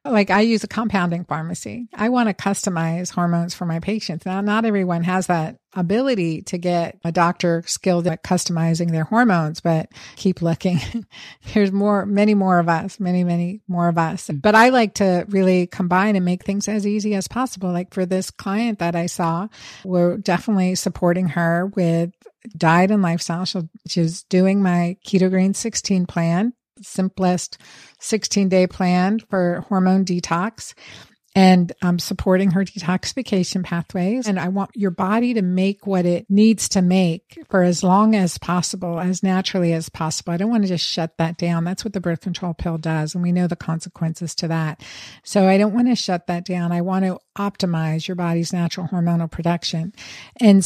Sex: female